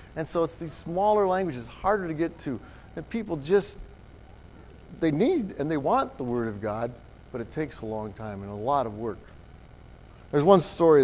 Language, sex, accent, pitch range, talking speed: English, male, American, 115-185 Hz, 195 wpm